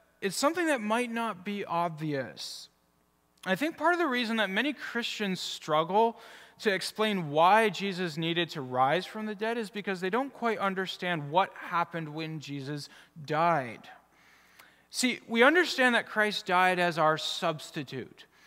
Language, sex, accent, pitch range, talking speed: English, male, American, 160-225 Hz, 155 wpm